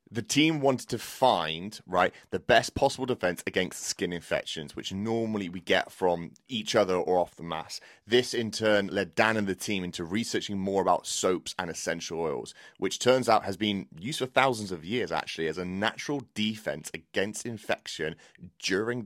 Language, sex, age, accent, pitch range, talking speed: English, male, 30-49, British, 90-115 Hz, 185 wpm